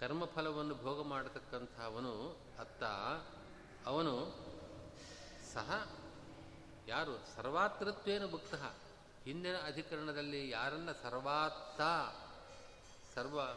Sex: male